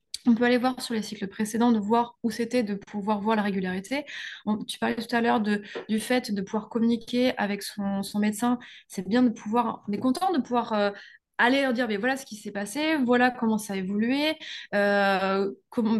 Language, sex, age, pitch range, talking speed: French, female, 20-39, 205-240 Hz, 220 wpm